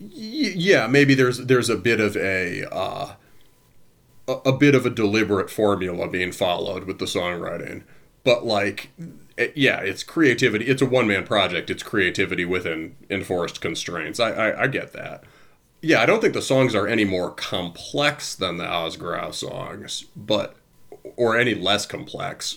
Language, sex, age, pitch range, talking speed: English, male, 30-49, 95-130 Hz, 160 wpm